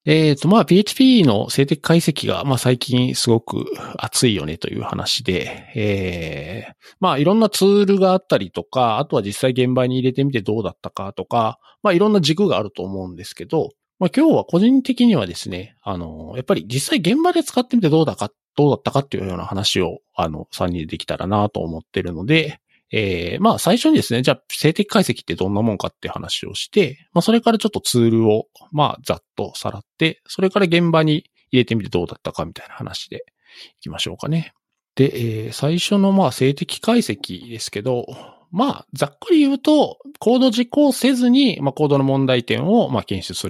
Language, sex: Japanese, male